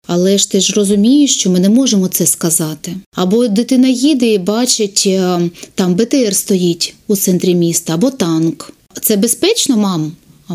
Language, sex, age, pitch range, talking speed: Ukrainian, female, 30-49, 180-235 Hz, 160 wpm